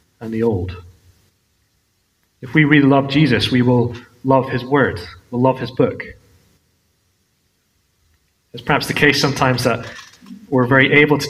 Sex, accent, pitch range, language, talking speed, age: male, British, 95-135 Hz, English, 145 wpm, 30-49